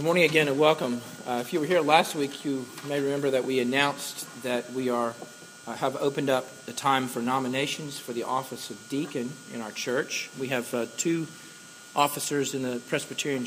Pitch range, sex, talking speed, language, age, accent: 120-145 Hz, male, 200 wpm, English, 40-59, American